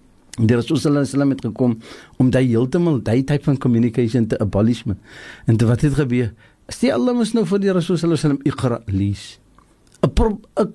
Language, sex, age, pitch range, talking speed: English, male, 60-79, 115-160 Hz, 220 wpm